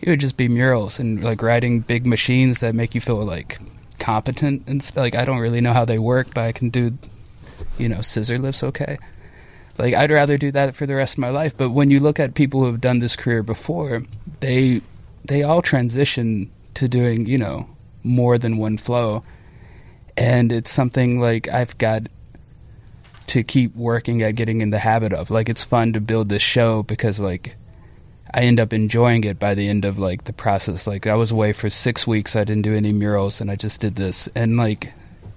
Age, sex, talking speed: 20-39, male, 210 wpm